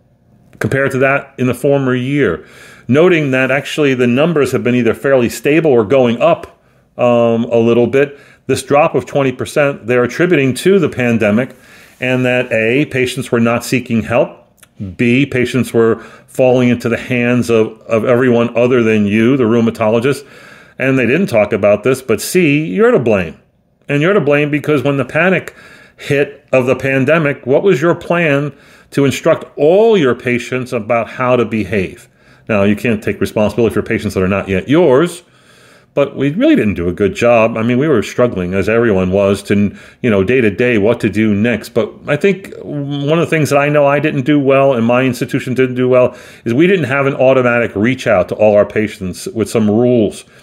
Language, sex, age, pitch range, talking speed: English, male, 40-59, 115-140 Hz, 200 wpm